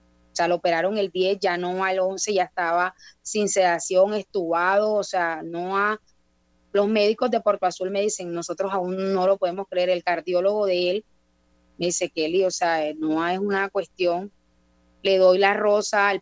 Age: 20-39